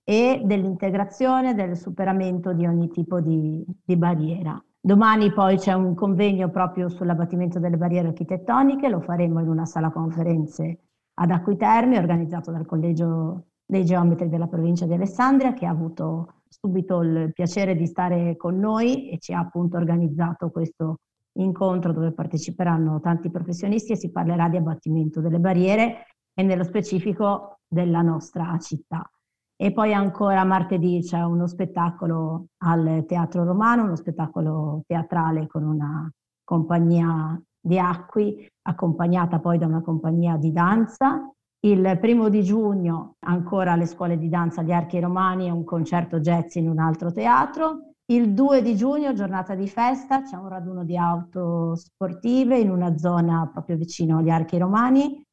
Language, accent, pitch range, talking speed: Italian, native, 165-195 Hz, 150 wpm